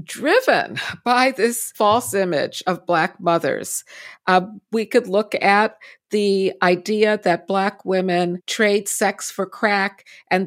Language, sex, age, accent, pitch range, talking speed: English, female, 50-69, American, 185-255 Hz, 130 wpm